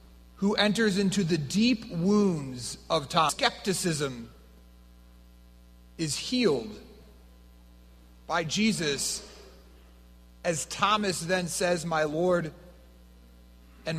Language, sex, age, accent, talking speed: English, male, 40-59, American, 85 wpm